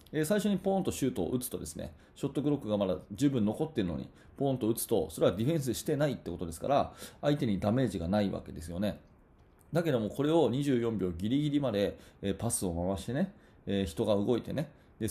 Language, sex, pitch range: Japanese, male, 105-165 Hz